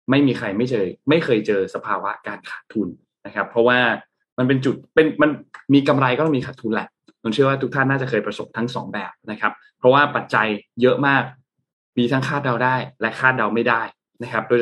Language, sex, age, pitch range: Thai, male, 20-39, 115-140 Hz